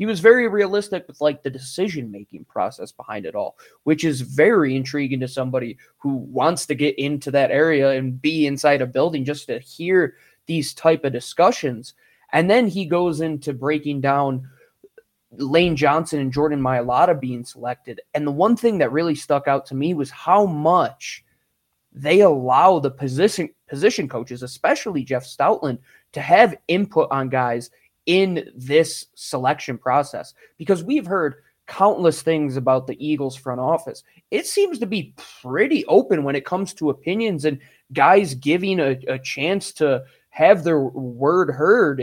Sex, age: male, 20-39